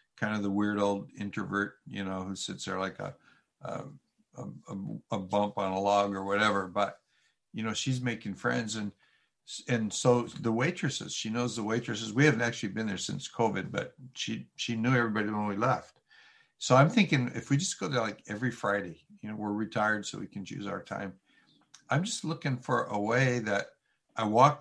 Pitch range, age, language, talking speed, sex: 105-125 Hz, 60-79, English, 200 wpm, male